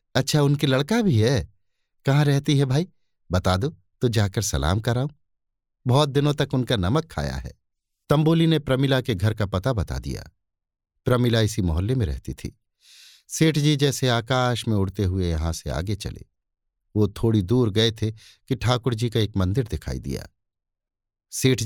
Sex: male